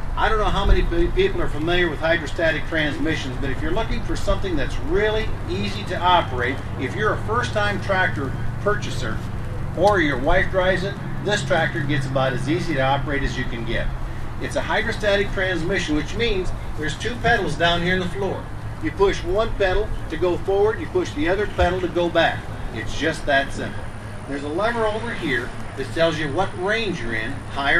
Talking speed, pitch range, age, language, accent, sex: 200 wpm, 105-175 Hz, 50-69, English, American, male